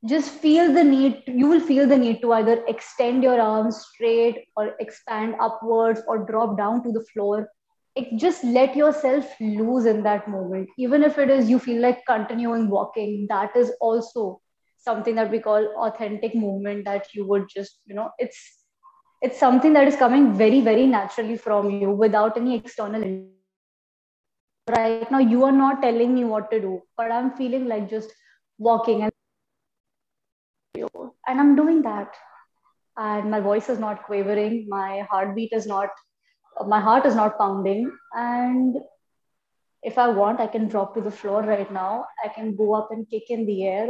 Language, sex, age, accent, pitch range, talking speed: English, female, 20-39, Indian, 210-255 Hz, 170 wpm